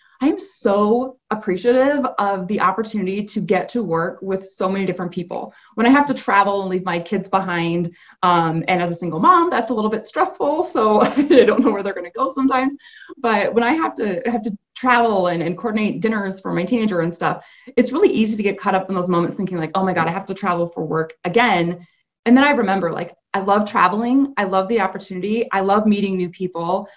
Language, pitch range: English, 175-230 Hz